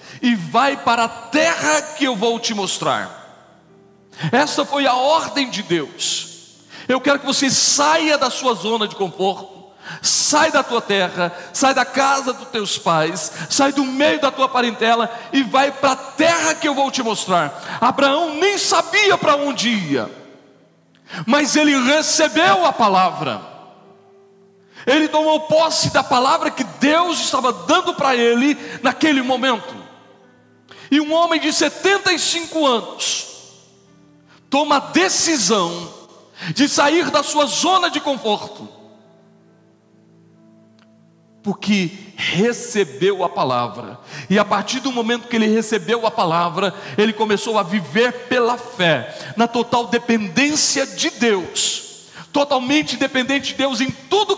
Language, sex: Portuguese, male